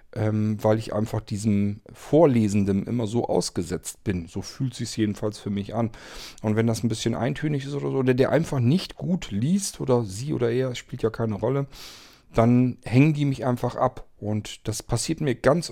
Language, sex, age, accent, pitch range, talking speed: German, male, 40-59, German, 110-140 Hz, 200 wpm